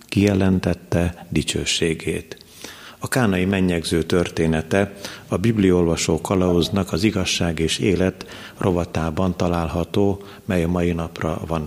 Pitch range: 85-95 Hz